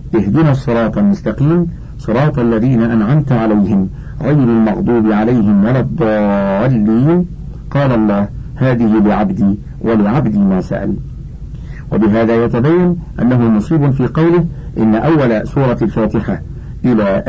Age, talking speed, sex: 50-69, 105 wpm, male